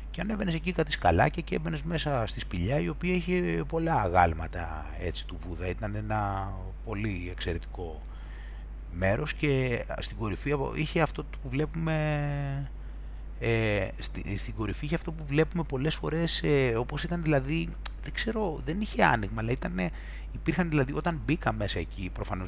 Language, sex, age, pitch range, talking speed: Greek, male, 30-49, 90-150 Hz, 155 wpm